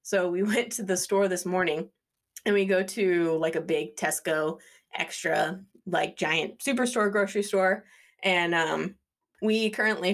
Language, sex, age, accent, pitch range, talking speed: English, female, 20-39, American, 165-200 Hz, 155 wpm